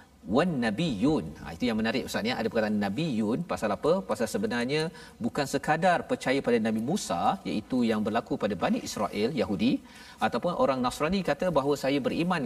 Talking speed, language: 180 wpm, Malayalam